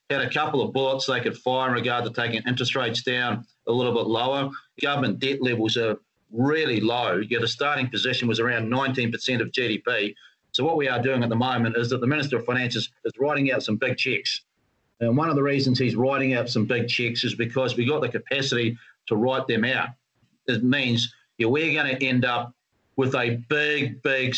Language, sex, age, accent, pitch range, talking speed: English, male, 40-59, Australian, 120-140 Hz, 210 wpm